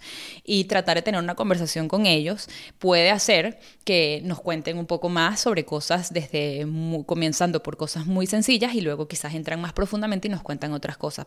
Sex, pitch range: female, 160-205 Hz